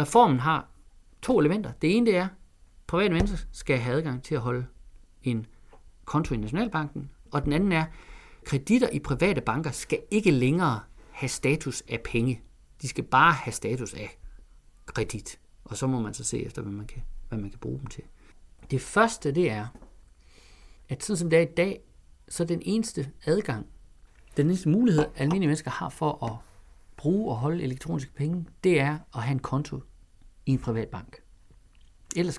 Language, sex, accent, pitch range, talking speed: Danish, male, native, 120-180 Hz, 175 wpm